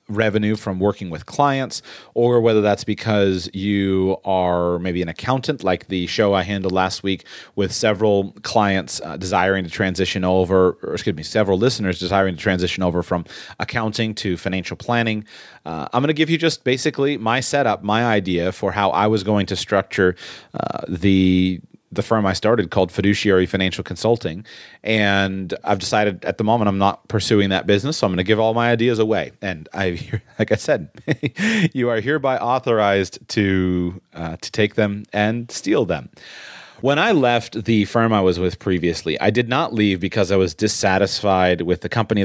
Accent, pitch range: American, 95-110 Hz